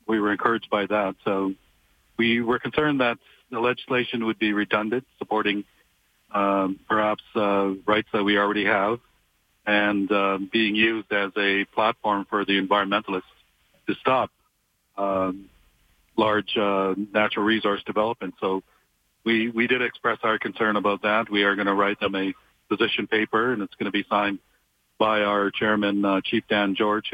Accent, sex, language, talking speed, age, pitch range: American, male, English, 160 wpm, 50-69, 100-110 Hz